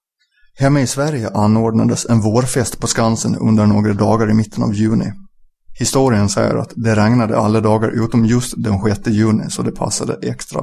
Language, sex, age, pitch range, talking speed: Swedish, male, 30-49, 110-120 Hz, 175 wpm